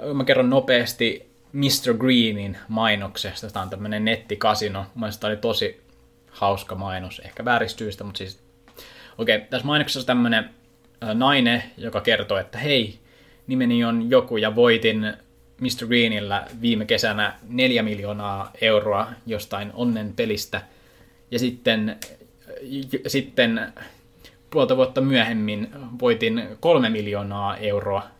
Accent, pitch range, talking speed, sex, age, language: native, 95-120 Hz, 120 wpm, male, 20-39, Finnish